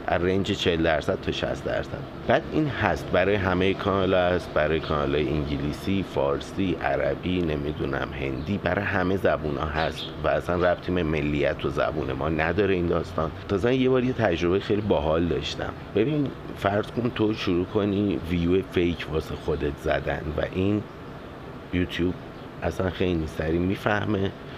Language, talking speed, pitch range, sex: Persian, 140 wpm, 80-100 Hz, male